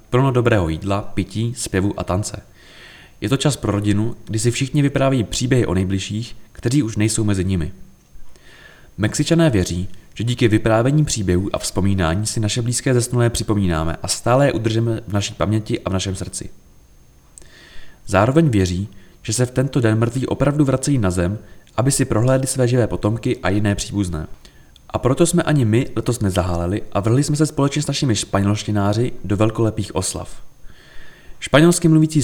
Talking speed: 165 wpm